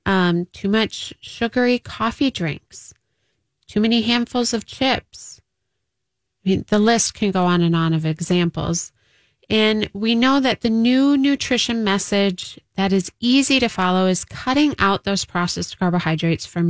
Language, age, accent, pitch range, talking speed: English, 30-49, American, 175-225 Hz, 145 wpm